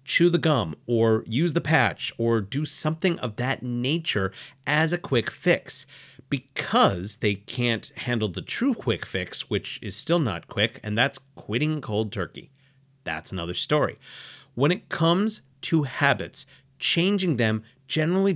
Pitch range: 115-155 Hz